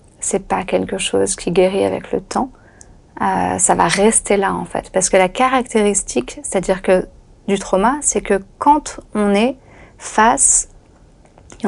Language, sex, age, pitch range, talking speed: French, female, 30-49, 190-235 Hz, 160 wpm